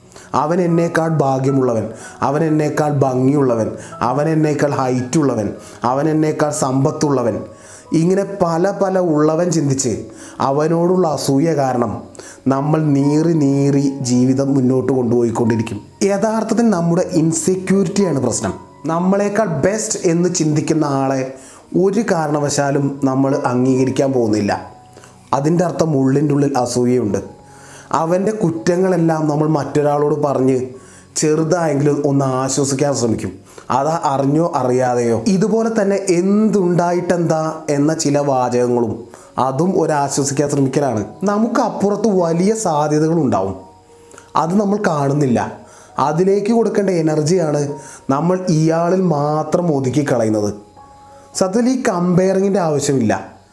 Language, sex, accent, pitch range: Malayalam, male, native, 130-175 Hz